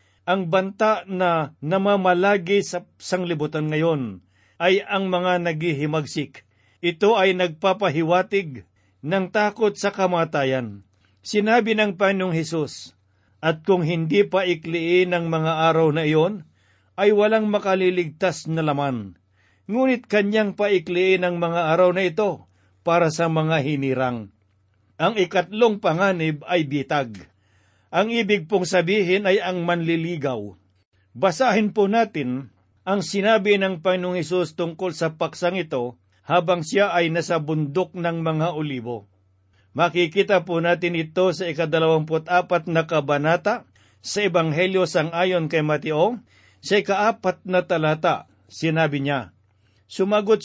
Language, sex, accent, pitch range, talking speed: Filipino, male, native, 145-190 Hz, 120 wpm